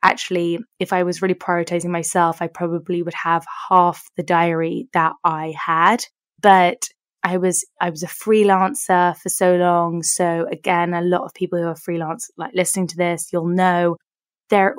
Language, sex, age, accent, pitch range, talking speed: English, female, 20-39, British, 175-190 Hz, 175 wpm